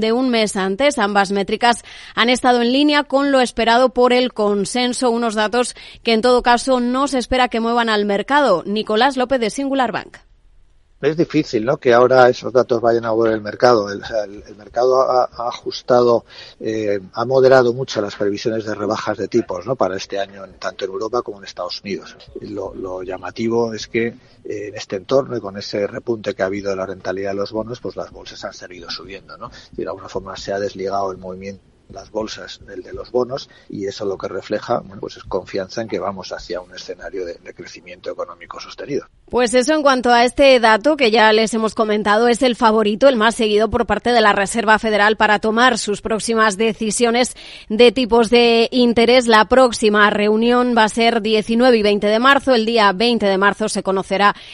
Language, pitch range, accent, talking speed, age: Spanish, 185-235 Hz, Spanish, 205 wpm, 30-49